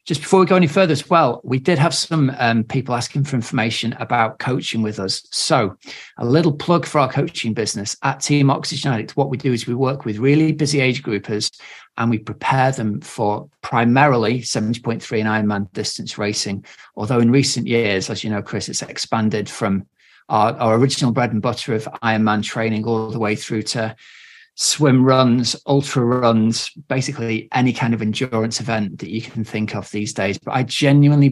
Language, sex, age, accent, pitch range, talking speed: English, male, 40-59, British, 105-130 Hz, 190 wpm